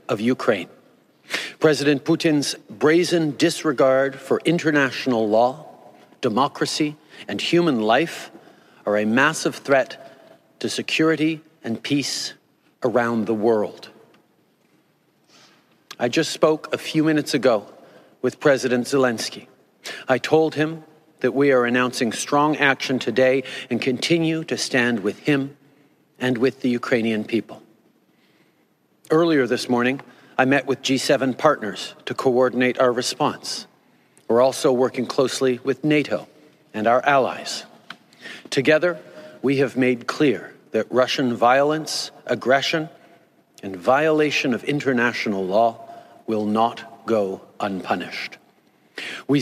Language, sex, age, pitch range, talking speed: English, male, 50-69, 125-150 Hz, 115 wpm